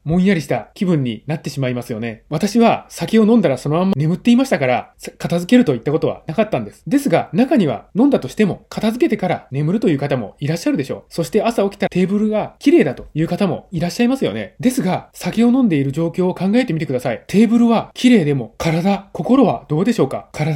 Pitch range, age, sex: 155-220 Hz, 20-39, male